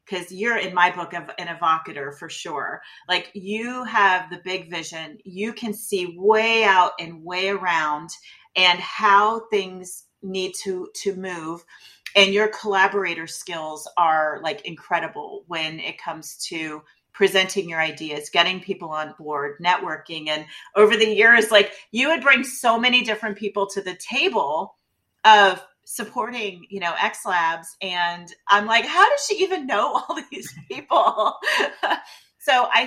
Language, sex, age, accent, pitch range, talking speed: English, female, 40-59, American, 170-220 Hz, 155 wpm